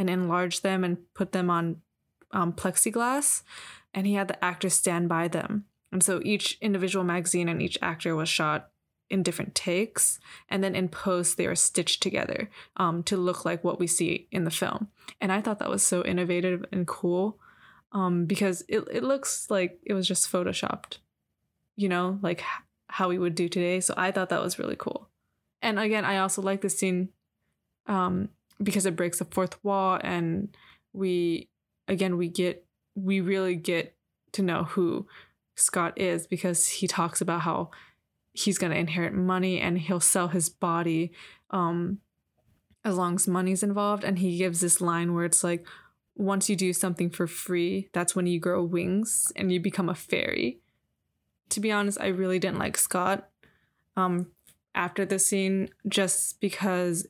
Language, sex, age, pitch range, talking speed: English, female, 20-39, 175-195 Hz, 175 wpm